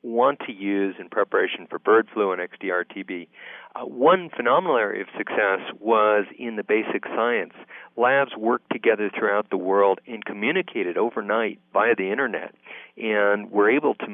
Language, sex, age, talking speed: English, male, 40-59, 160 wpm